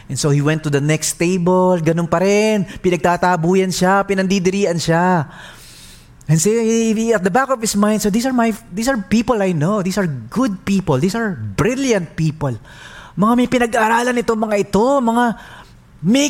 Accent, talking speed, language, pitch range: Filipino, 180 wpm, English, 155-215 Hz